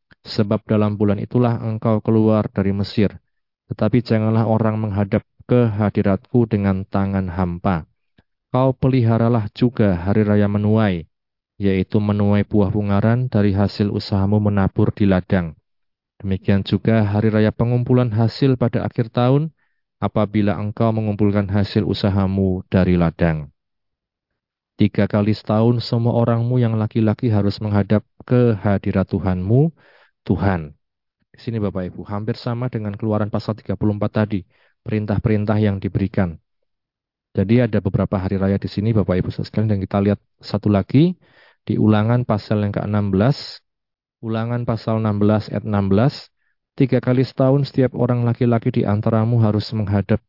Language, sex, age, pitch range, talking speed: Indonesian, male, 30-49, 100-115 Hz, 130 wpm